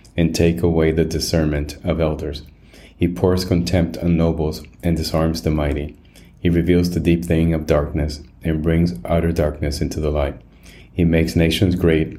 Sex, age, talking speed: male, 30-49, 165 wpm